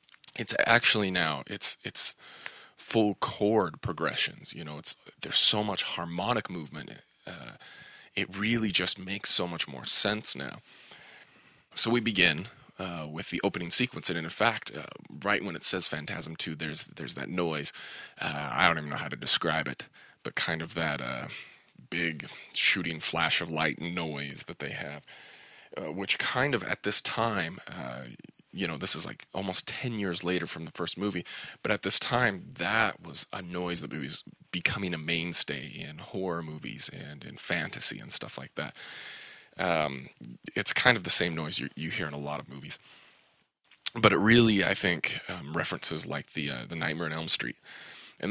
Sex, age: male, 30-49